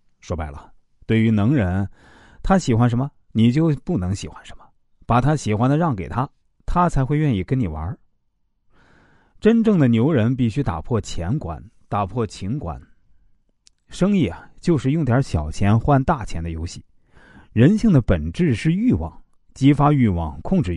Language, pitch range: Chinese, 95-140 Hz